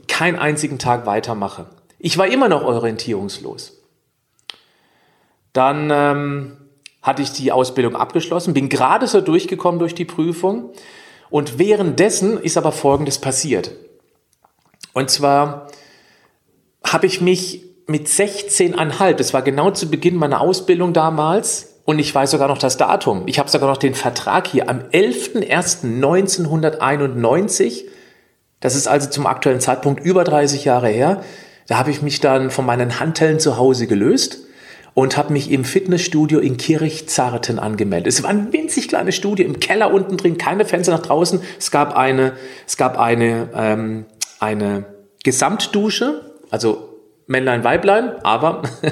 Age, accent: 40-59, German